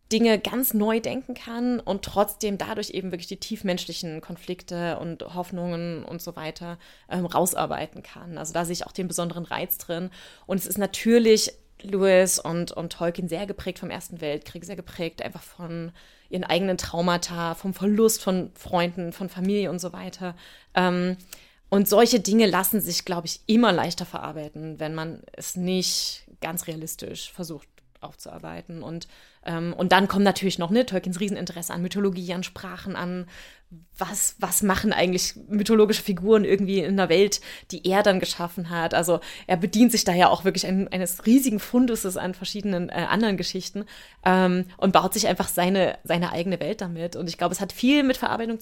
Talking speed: 175 wpm